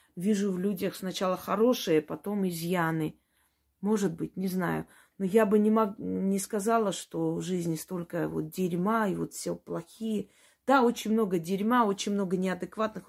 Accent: native